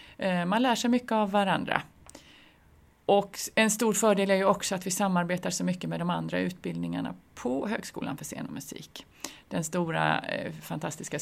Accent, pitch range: native, 155-215 Hz